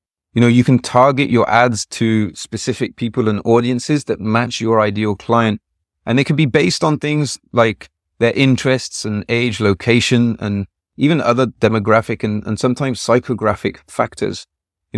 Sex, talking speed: male, 160 wpm